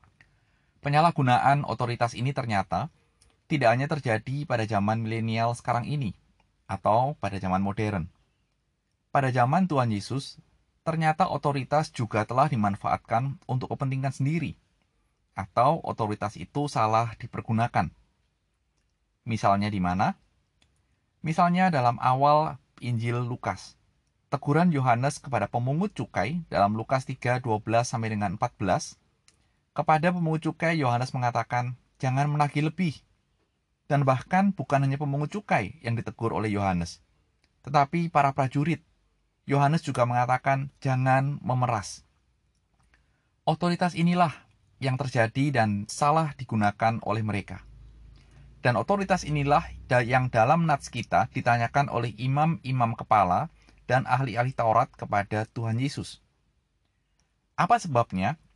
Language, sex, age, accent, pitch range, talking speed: Indonesian, male, 20-39, native, 110-145 Hz, 105 wpm